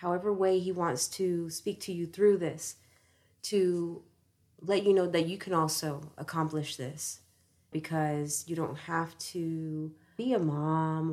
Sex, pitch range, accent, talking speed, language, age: female, 150-170 Hz, American, 150 wpm, English, 30-49